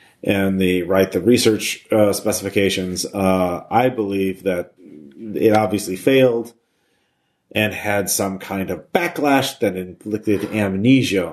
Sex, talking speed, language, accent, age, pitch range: male, 120 wpm, English, American, 30-49, 90-110 Hz